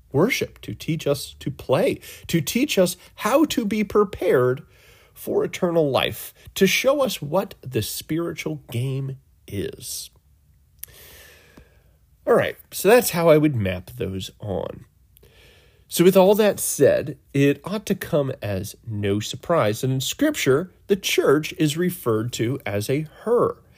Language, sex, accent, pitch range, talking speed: English, male, American, 100-150 Hz, 145 wpm